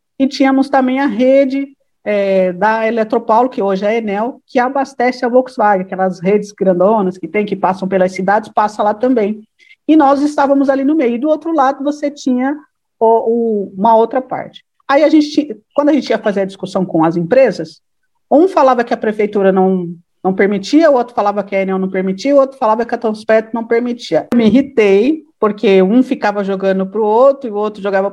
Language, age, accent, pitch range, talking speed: Portuguese, 50-69, Brazilian, 205-270 Hz, 205 wpm